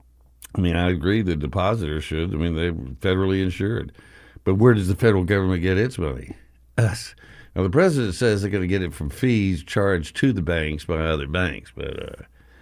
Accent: American